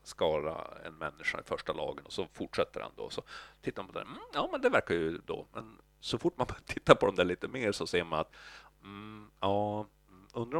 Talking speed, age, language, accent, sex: 230 wpm, 50-69, Swedish, native, male